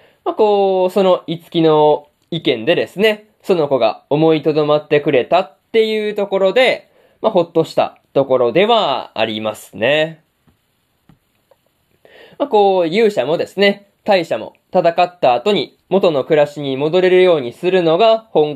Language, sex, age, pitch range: Japanese, male, 20-39, 145-205 Hz